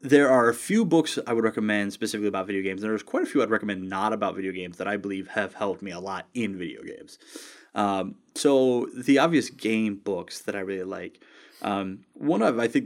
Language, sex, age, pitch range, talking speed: English, male, 20-39, 100-120 Hz, 230 wpm